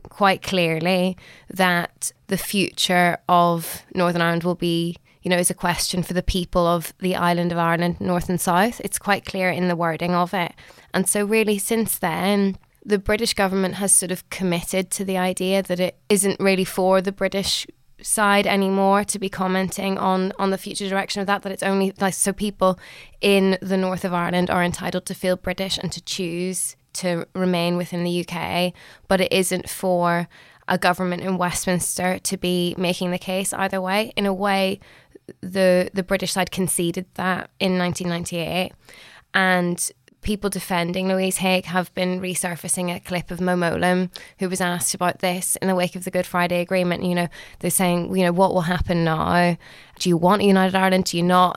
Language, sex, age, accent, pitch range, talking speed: English, female, 20-39, British, 180-195 Hz, 185 wpm